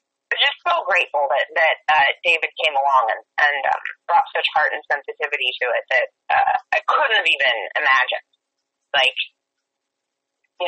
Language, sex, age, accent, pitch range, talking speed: English, female, 30-49, American, 175-270 Hz, 155 wpm